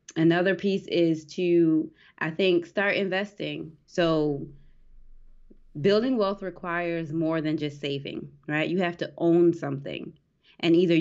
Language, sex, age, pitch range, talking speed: English, female, 20-39, 150-175 Hz, 130 wpm